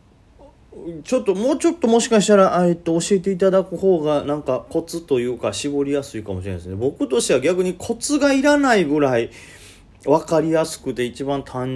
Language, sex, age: Japanese, male, 30-49